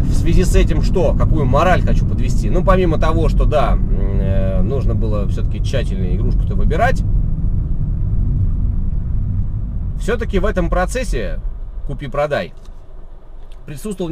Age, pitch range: 30-49, 100-150 Hz